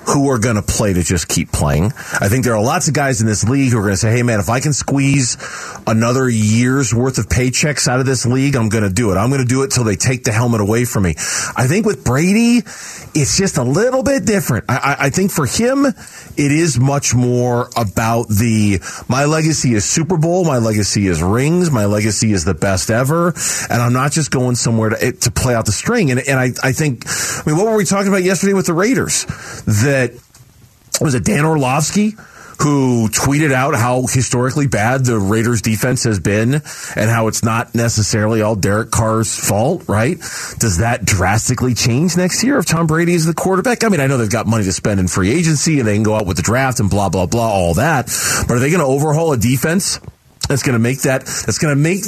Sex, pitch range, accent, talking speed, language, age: male, 110-150 Hz, American, 230 wpm, English, 40-59